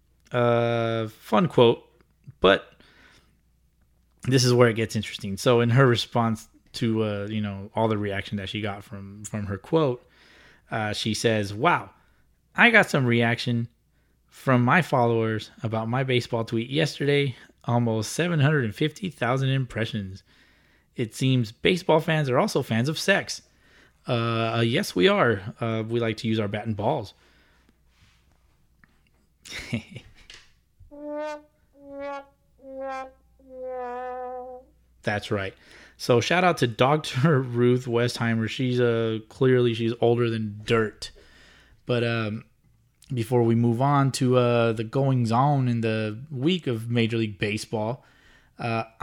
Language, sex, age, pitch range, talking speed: English, male, 20-39, 110-140 Hz, 125 wpm